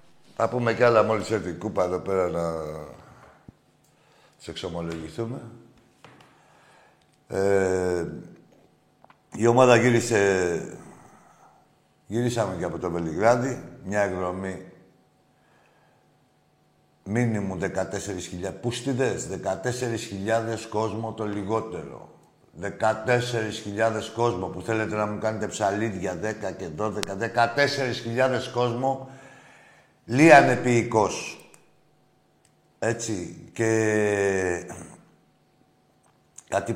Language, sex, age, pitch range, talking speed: Greek, male, 60-79, 95-120 Hz, 80 wpm